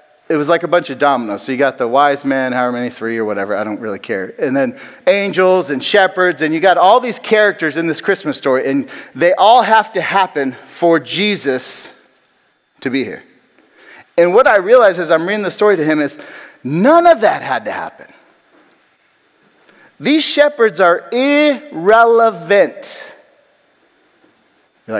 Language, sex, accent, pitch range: English, male, American, 150-220 Hz